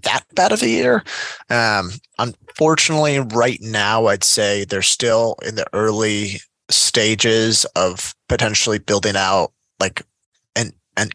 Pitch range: 100-130 Hz